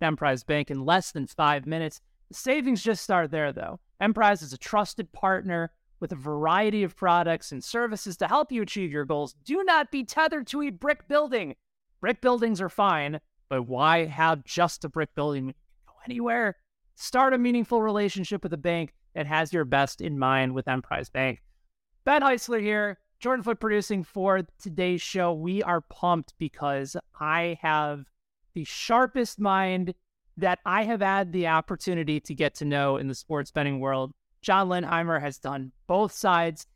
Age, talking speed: 30-49, 175 wpm